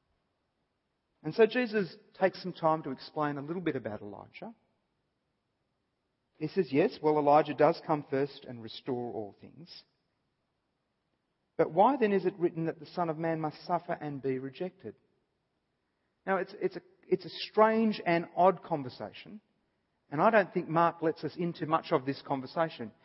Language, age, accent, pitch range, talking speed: English, 40-59, Australian, 145-185 Hz, 165 wpm